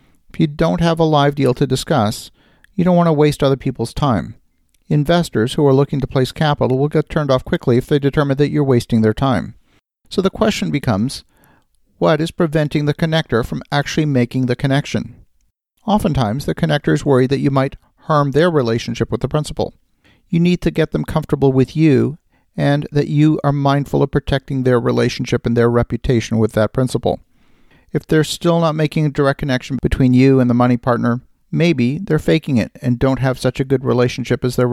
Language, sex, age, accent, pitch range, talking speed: English, male, 50-69, American, 120-150 Hz, 195 wpm